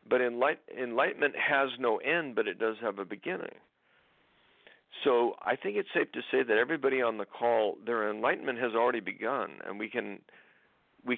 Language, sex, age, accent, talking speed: English, male, 50-69, American, 175 wpm